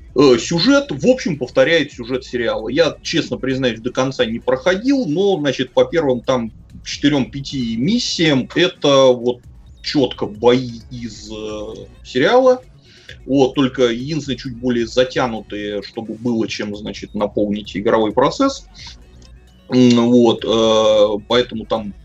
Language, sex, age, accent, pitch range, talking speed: Russian, male, 30-49, native, 110-140 Hz, 120 wpm